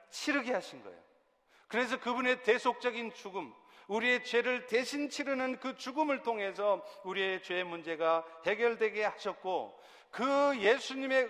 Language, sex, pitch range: Korean, male, 185-250 Hz